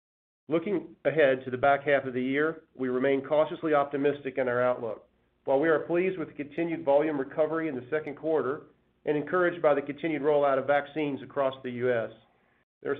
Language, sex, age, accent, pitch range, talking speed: English, male, 40-59, American, 125-150 Hz, 190 wpm